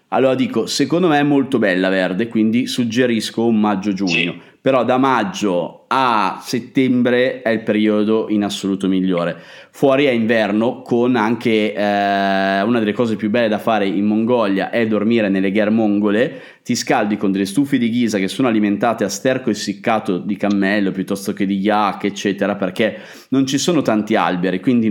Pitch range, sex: 95-120 Hz, male